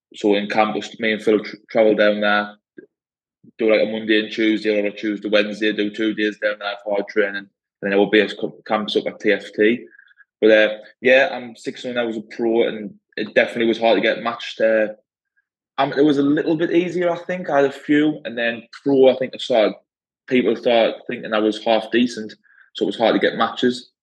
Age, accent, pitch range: 20-39, British, 105-120 Hz